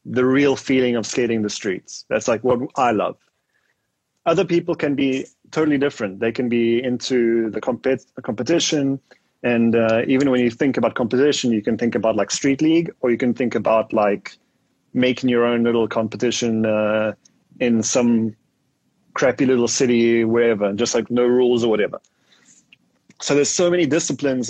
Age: 30-49